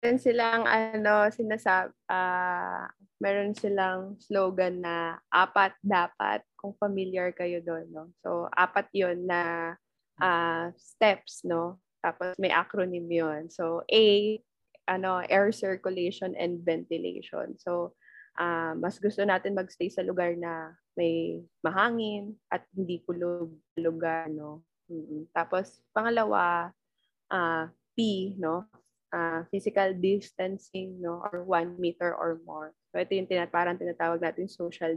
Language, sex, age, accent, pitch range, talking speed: Filipino, female, 20-39, native, 165-195 Hz, 125 wpm